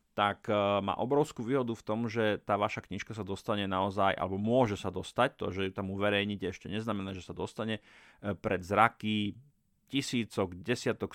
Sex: male